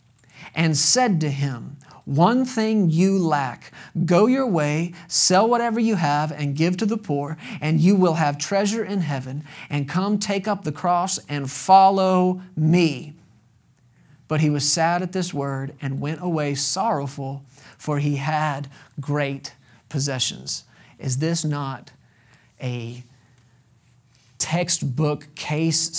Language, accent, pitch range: English, American, 135-170 Hz